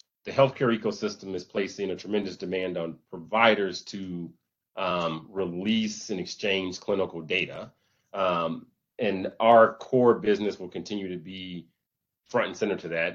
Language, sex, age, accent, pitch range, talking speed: English, male, 30-49, American, 90-100 Hz, 140 wpm